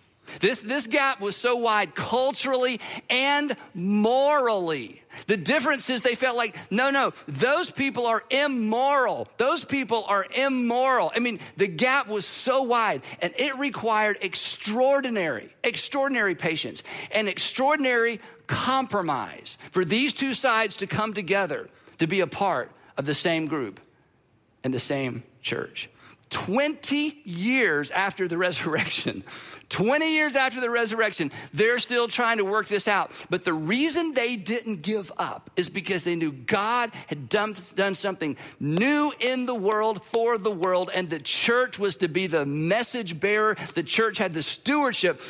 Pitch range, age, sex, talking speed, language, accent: 180-245 Hz, 50-69, male, 150 wpm, English, American